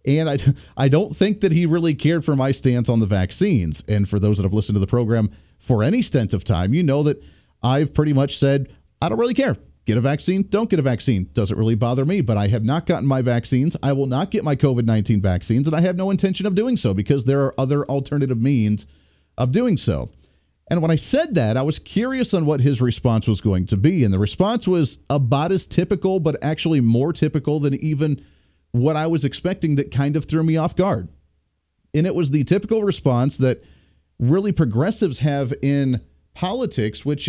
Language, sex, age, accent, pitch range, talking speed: English, male, 40-59, American, 110-165 Hz, 215 wpm